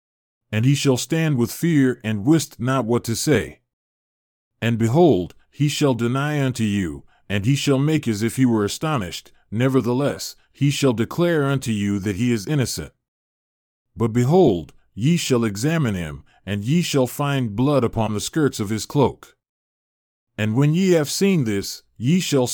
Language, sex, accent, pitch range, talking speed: English, male, American, 110-150 Hz, 170 wpm